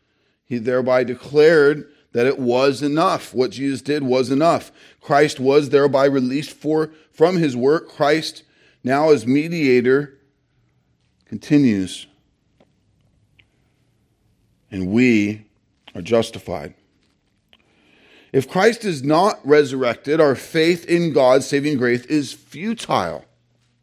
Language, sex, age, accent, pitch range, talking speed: English, male, 40-59, American, 120-150 Hz, 105 wpm